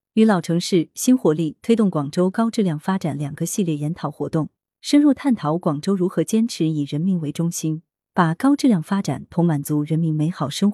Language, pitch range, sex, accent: Chinese, 155-220 Hz, female, native